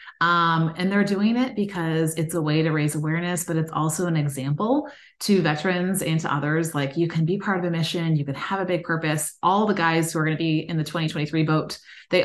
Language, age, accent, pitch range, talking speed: English, 30-49, American, 155-190 Hz, 240 wpm